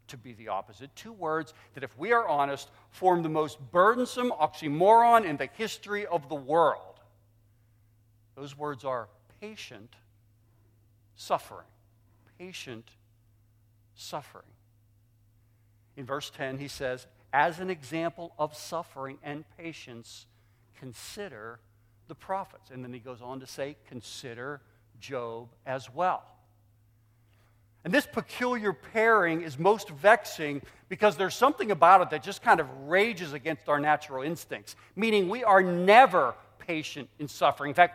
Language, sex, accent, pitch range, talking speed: English, male, American, 110-180 Hz, 135 wpm